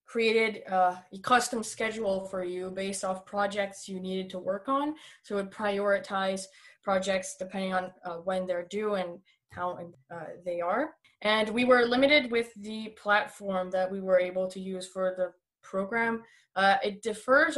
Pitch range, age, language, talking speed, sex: 190-225 Hz, 20-39, English, 170 wpm, female